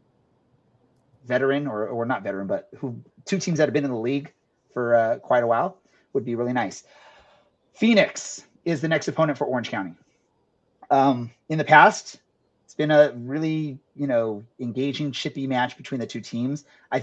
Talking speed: 175 wpm